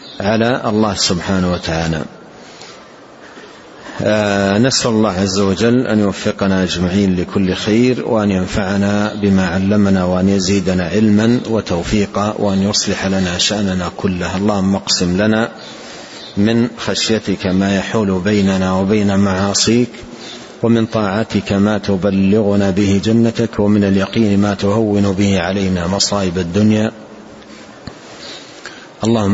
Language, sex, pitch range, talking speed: Arabic, male, 95-105 Hz, 105 wpm